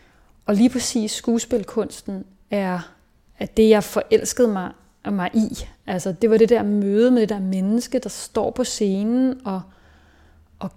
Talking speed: 155 wpm